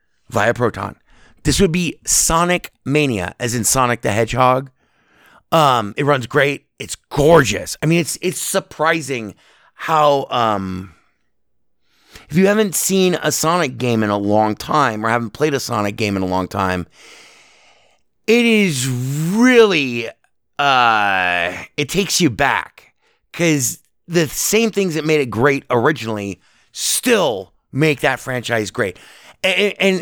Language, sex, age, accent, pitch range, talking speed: English, male, 30-49, American, 115-170 Hz, 140 wpm